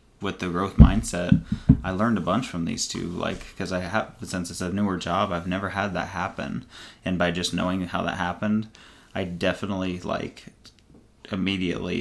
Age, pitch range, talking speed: 20-39, 90-105 Hz, 180 wpm